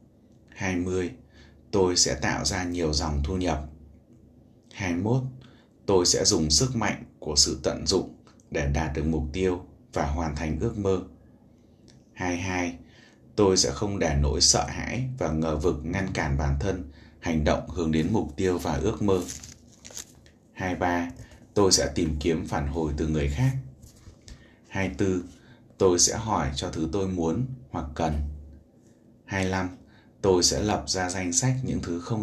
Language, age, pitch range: Vietnamese, 20-39, 80-105 Hz